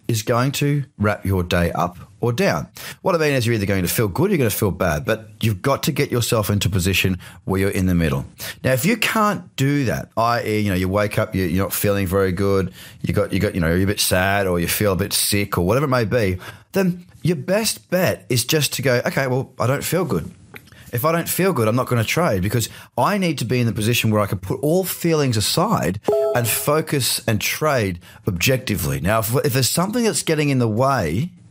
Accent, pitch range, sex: Australian, 100-135 Hz, male